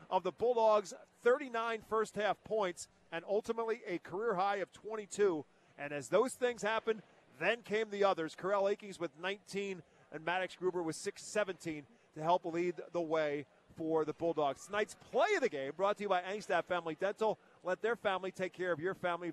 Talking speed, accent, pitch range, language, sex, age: 185 wpm, American, 180-225 Hz, English, male, 40-59